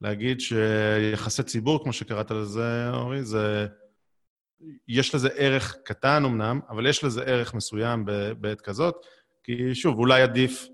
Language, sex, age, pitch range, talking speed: Hebrew, male, 30-49, 105-130 Hz, 140 wpm